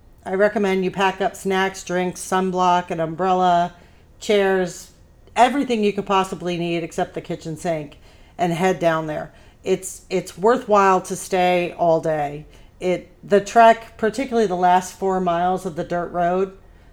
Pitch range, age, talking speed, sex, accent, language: 165-205 Hz, 40-59, 150 wpm, female, American, English